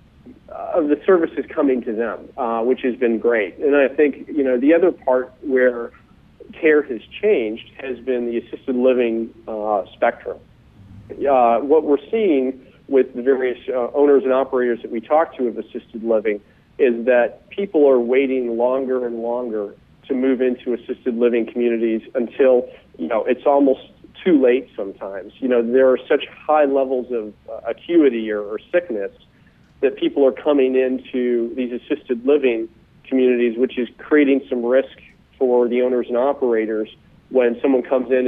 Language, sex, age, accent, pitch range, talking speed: English, male, 40-59, American, 120-135 Hz, 165 wpm